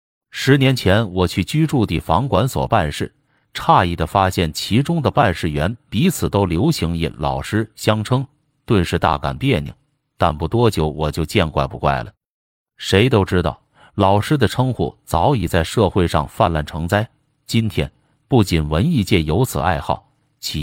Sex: male